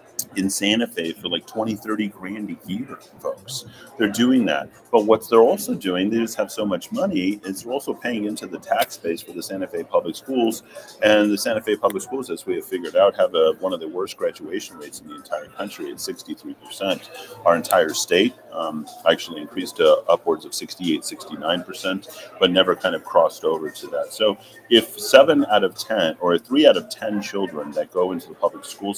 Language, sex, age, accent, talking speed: English, male, 40-59, American, 205 wpm